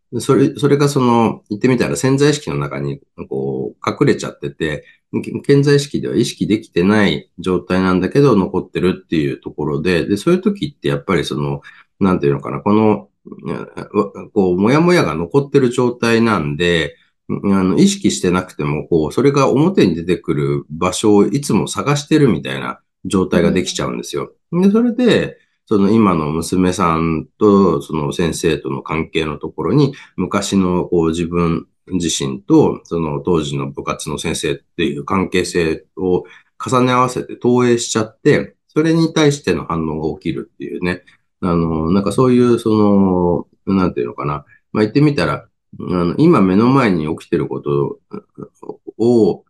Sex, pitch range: male, 80-120 Hz